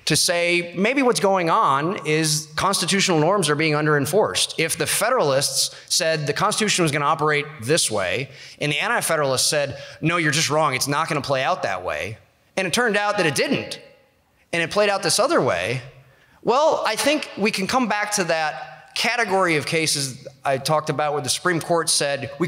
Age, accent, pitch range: 30-49, American, 140-195 Hz